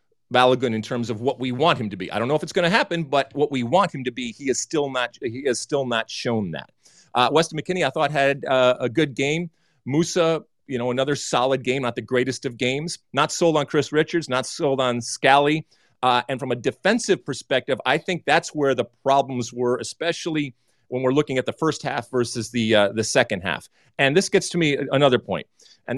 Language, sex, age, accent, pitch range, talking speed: English, male, 40-59, American, 120-155 Hz, 230 wpm